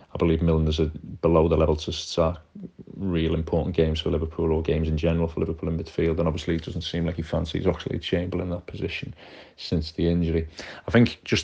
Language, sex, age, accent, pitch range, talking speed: English, male, 30-49, British, 85-95 Hz, 210 wpm